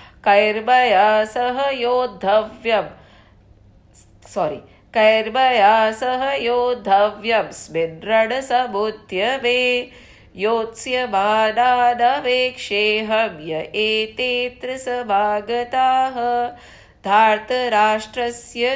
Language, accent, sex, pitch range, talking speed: English, Indian, female, 210-245 Hz, 65 wpm